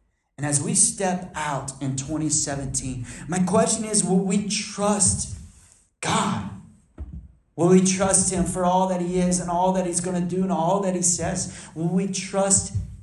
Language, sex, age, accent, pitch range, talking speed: English, male, 40-59, American, 140-200 Hz, 175 wpm